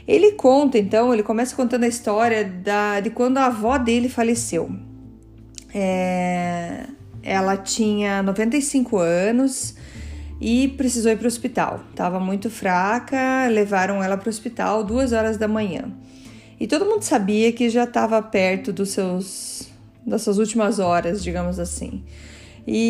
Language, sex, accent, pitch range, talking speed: Portuguese, female, Brazilian, 195-245 Hz, 135 wpm